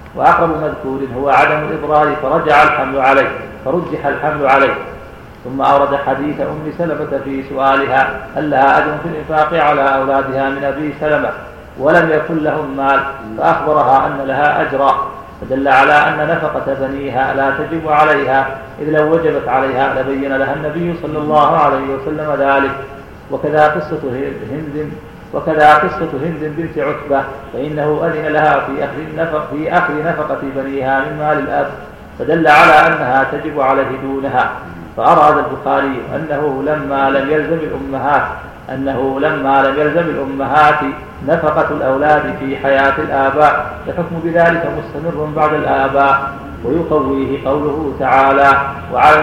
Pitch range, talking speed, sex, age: 135-155 Hz, 130 wpm, male, 40-59